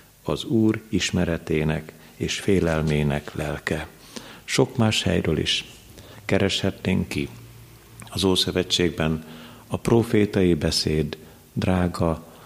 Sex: male